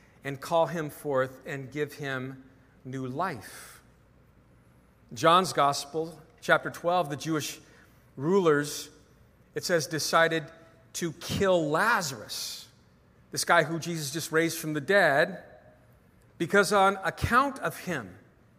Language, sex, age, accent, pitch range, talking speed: English, male, 50-69, American, 150-180 Hz, 115 wpm